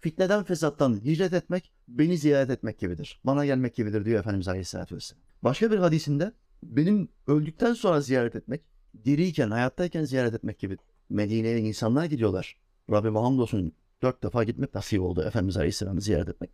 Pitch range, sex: 110-160 Hz, male